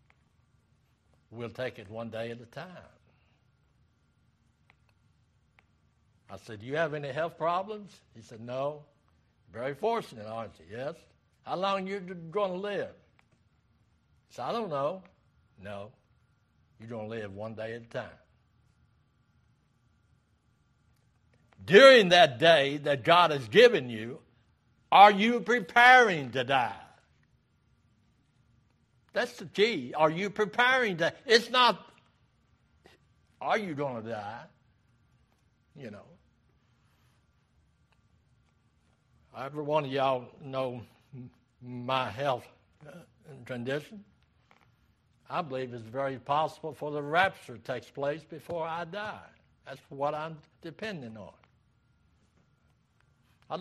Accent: American